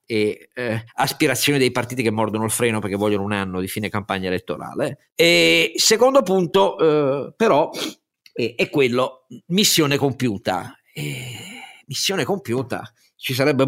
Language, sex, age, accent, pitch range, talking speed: Italian, male, 50-69, native, 115-170 Hz, 140 wpm